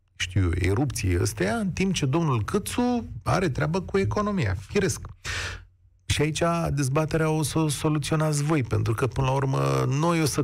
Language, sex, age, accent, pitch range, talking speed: Romanian, male, 40-59, native, 105-160 Hz, 165 wpm